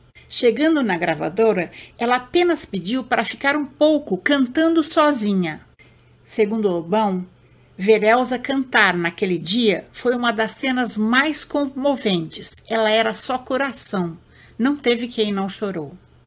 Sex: female